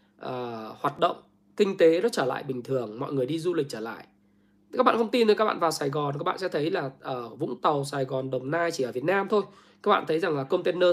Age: 20-39